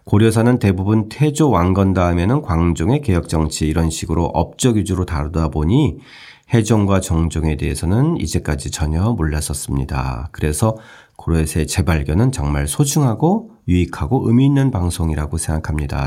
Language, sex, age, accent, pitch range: Korean, male, 40-59, native, 80-120 Hz